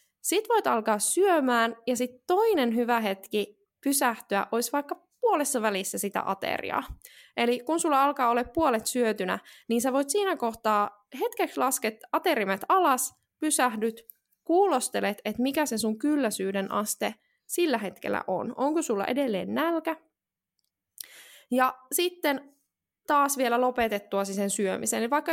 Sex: female